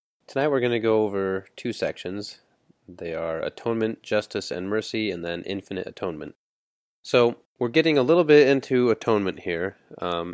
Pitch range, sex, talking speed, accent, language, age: 90-110 Hz, male, 165 wpm, American, English, 20-39